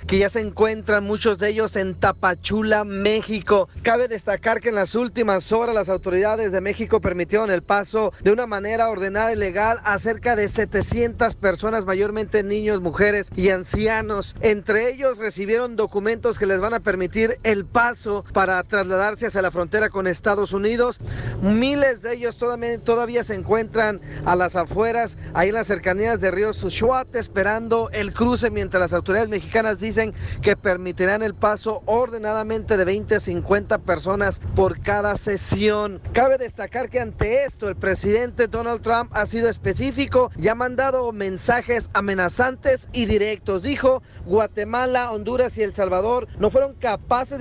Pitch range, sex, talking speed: 200-235 Hz, male, 160 wpm